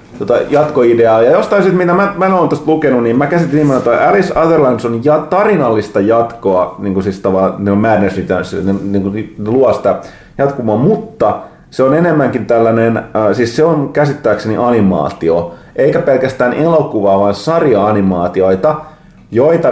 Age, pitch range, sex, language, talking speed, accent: 30-49, 100-140 Hz, male, Finnish, 140 wpm, native